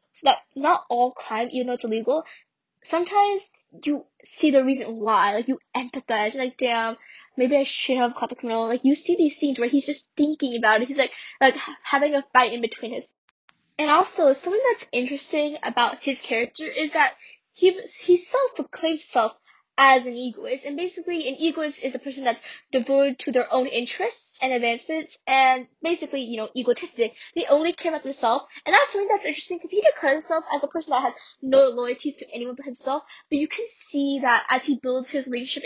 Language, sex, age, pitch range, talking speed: English, female, 10-29, 250-325 Hz, 200 wpm